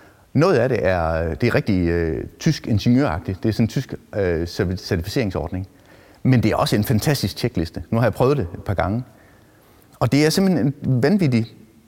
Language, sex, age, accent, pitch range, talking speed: Danish, male, 30-49, native, 100-130 Hz, 180 wpm